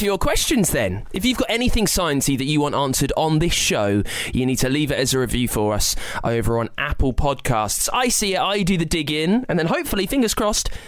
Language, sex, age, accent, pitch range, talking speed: English, male, 20-39, British, 130-195 Hz, 230 wpm